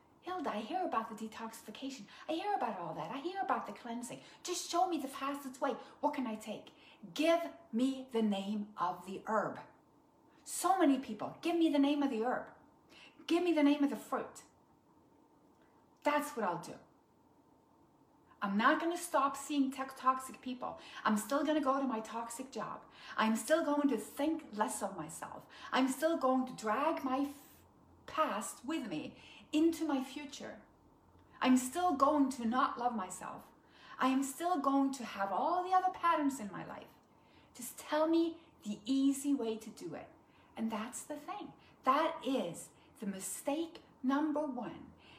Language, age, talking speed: English, 40-59, 170 wpm